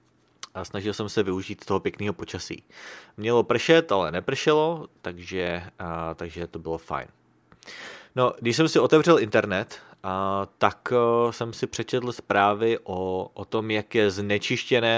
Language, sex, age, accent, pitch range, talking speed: English, male, 30-49, Czech, 90-115 Hz, 150 wpm